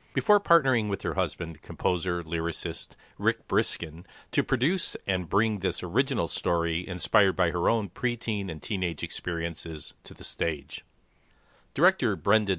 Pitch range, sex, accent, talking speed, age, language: 85-110 Hz, male, American, 140 wpm, 50-69, English